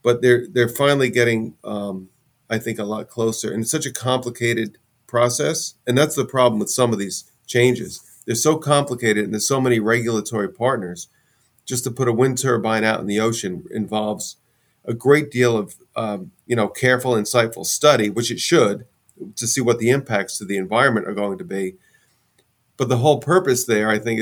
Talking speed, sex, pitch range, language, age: 195 wpm, male, 110-130 Hz, English, 40-59